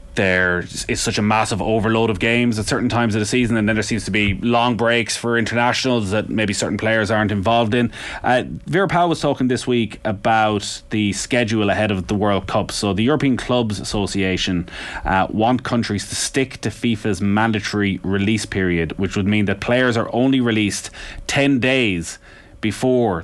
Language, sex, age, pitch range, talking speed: English, male, 30-49, 95-120 Hz, 185 wpm